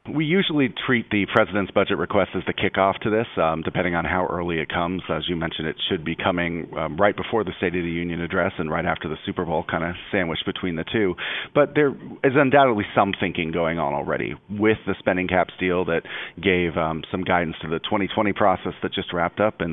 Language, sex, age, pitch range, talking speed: English, male, 40-59, 85-100 Hz, 230 wpm